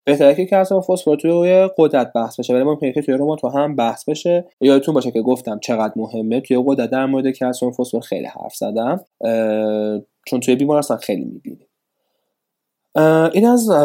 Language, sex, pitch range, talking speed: Persian, male, 115-150 Hz, 155 wpm